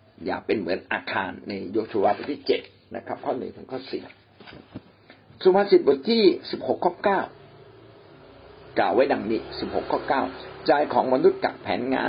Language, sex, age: Thai, male, 60-79